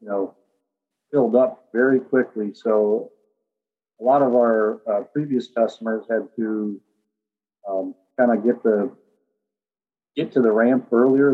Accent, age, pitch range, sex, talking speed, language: American, 40-59, 110-120 Hz, male, 130 wpm, English